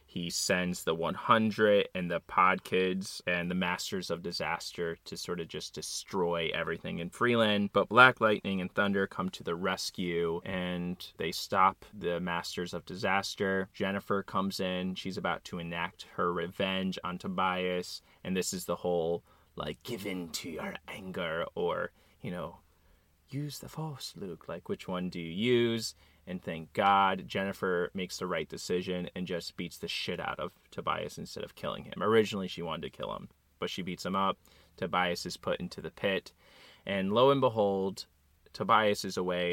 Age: 20-39